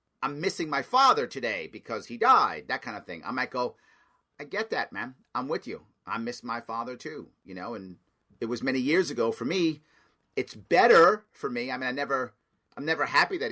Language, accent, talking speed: English, American, 215 wpm